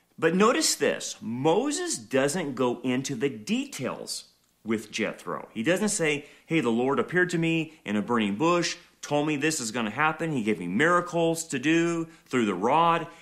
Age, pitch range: 40-59, 120-170 Hz